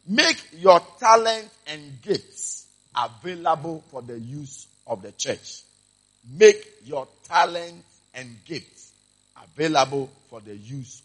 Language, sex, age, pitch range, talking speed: English, male, 50-69, 115-175 Hz, 115 wpm